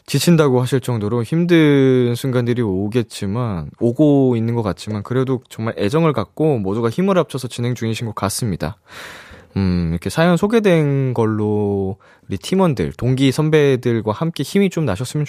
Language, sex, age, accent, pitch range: Korean, male, 20-39, native, 100-145 Hz